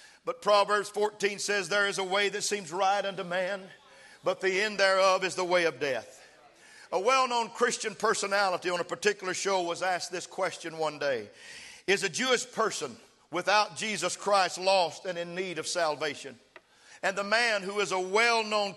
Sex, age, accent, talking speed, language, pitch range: male, 50-69, American, 180 wpm, English, 190-245 Hz